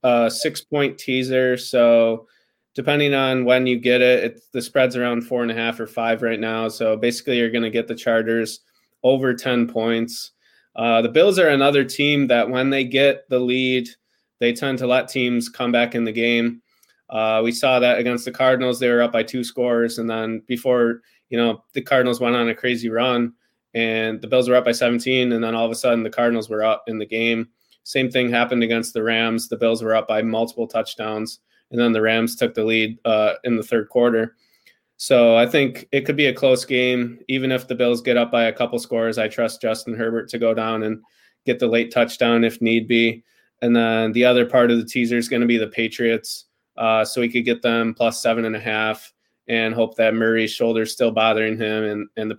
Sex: male